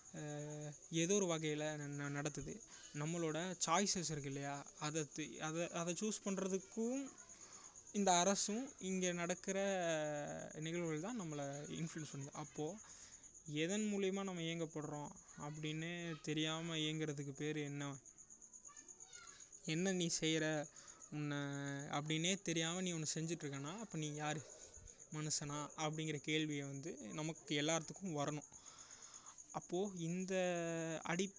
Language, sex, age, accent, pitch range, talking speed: Tamil, male, 20-39, native, 145-175 Hz, 105 wpm